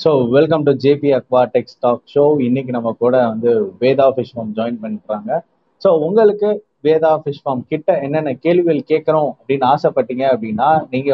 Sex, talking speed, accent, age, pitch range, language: male, 160 wpm, native, 30-49, 125-150 Hz, Tamil